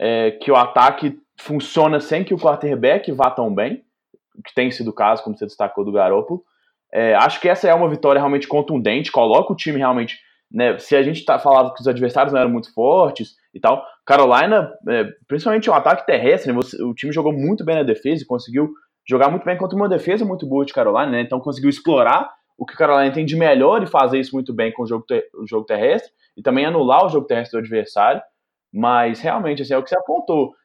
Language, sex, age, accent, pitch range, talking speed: Portuguese, male, 20-39, Brazilian, 125-180 Hz, 225 wpm